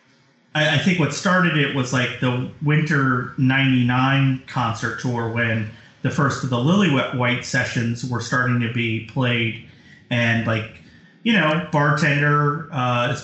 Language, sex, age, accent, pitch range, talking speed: English, male, 30-49, American, 120-160 Hz, 145 wpm